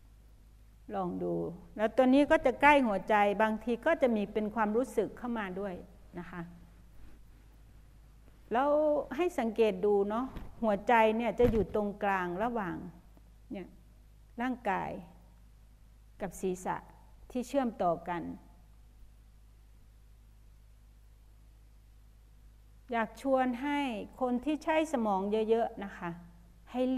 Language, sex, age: Thai, female, 60-79